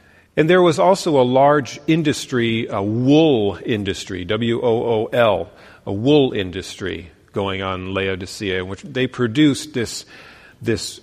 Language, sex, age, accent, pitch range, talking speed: English, male, 40-59, American, 105-140 Hz, 130 wpm